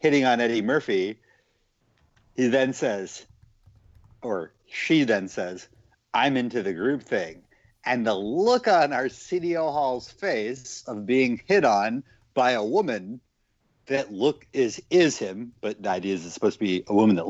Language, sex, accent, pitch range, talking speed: English, male, American, 110-165 Hz, 165 wpm